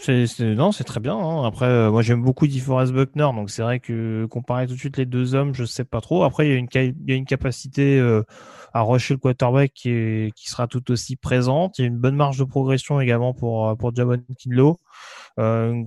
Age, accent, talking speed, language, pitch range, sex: 20-39, French, 255 wpm, French, 120-140 Hz, male